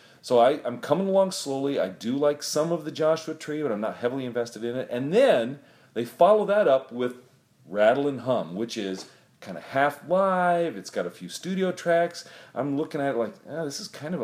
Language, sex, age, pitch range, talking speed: English, male, 40-59, 125-185 Hz, 210 wpm